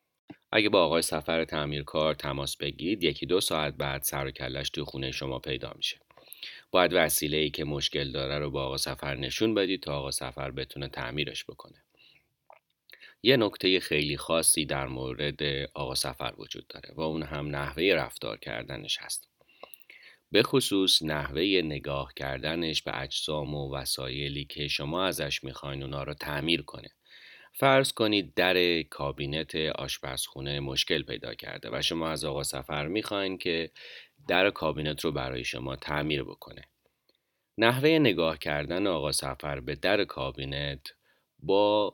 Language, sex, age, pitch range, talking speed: Persian, male, 30-49, 70-80 Hz, 145 wpm